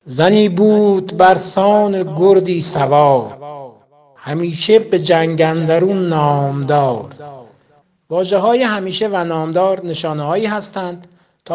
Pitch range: 145-200 Hz